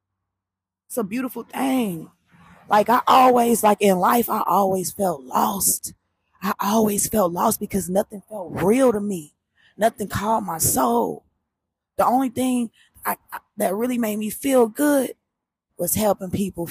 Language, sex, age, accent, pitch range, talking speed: English, female, 20-39, American, 180-230 Hz, 145 wpm